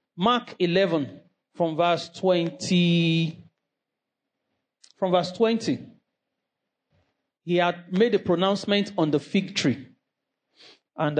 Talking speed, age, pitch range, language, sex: 95 wpm, 40-59, 155-195 Hz, English, male